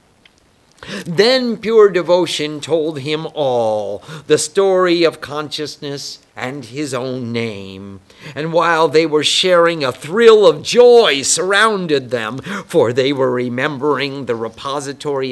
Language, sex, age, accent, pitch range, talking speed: English, male, 50-69, American, 130-195 Hz, 120 wpm